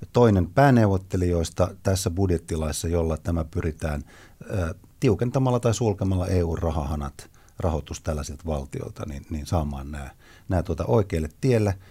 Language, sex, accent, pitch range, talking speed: Finnish, male, native, 80-110 Hz, 115 wpm